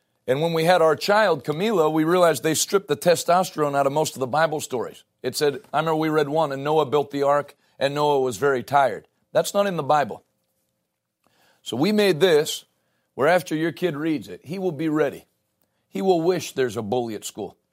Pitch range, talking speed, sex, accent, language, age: 130-165 Hz, 215 wpm, male, American, English, 40-59